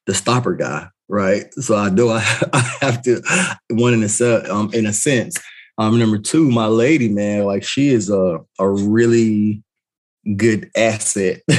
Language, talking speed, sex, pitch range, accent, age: English, 160 wpm, male, 100-120 Hz, American, 20-39